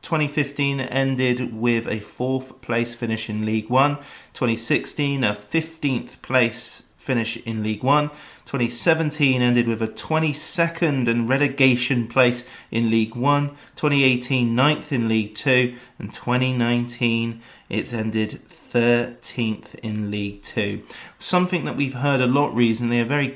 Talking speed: 130 wpm